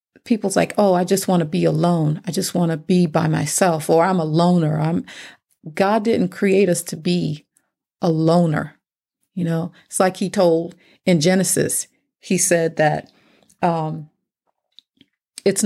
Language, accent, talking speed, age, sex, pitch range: English, American, 155 wpm, 40-59, female, 160-185 Hz